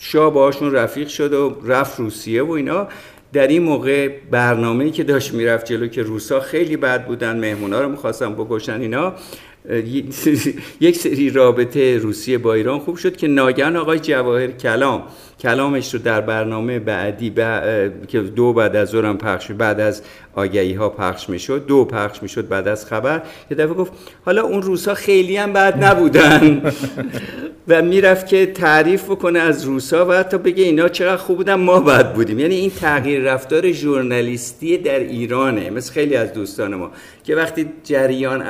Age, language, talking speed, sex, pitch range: 50-69, Persian, 175 wpm, male, 115-160 Hz